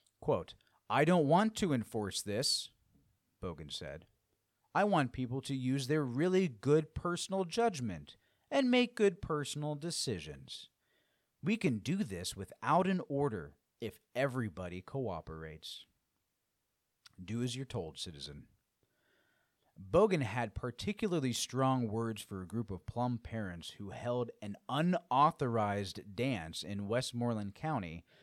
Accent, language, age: American, English, 30-49